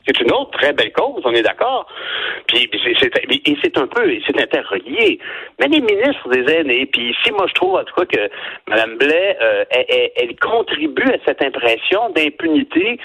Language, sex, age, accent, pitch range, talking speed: French, male, 60-79, French, 320-445 Hz, 205 wpm